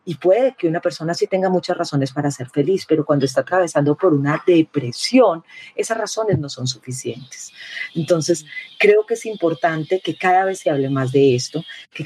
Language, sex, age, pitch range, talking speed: Spanish, female, 40-59, 140-185 Hz, 190 wpm